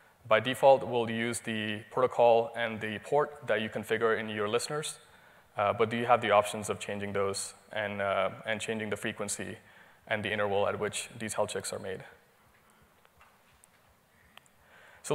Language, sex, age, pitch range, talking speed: English, male, 20-39, 105-120 Hz, 165 wpm